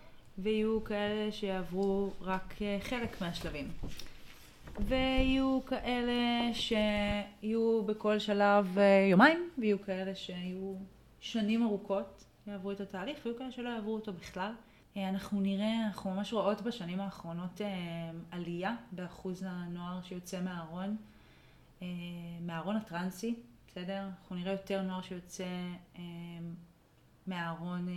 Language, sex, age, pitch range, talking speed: Hebrew, female, 30-49, 180-205 Hz, 100 wpm